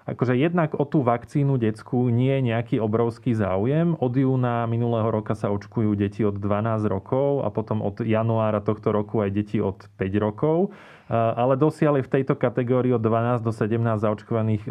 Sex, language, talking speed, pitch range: male, Slovak, 170 wpm, 110-130 Hz